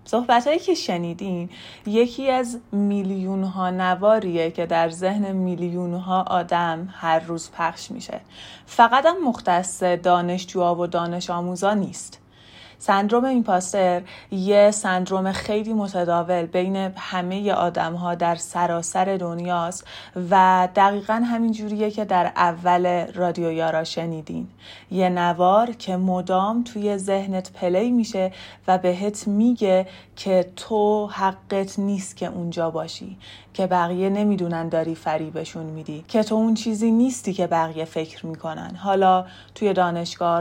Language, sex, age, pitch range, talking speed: Persian, female, 30-49, 175-210 Hz, 125 wpm